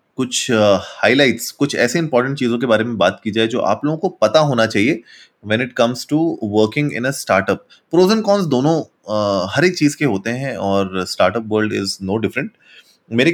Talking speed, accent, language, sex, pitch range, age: 205 wpm, native, Hindi, male, 110-165 Hz, 20-39